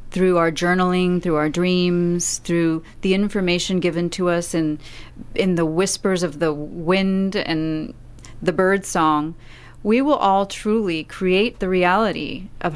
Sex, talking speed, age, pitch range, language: female, 145 wpm, 30-49, 165-200 Hz, English